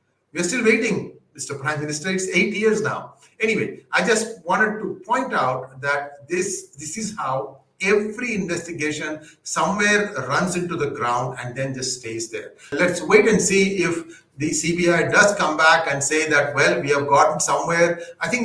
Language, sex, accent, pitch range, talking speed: English, male, Indian, 145-205 Hz, 180 wpm